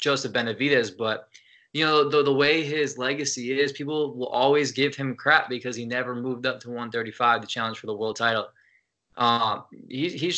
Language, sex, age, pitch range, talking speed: English, male, 20-39, 115-135 Hz, 190 wpm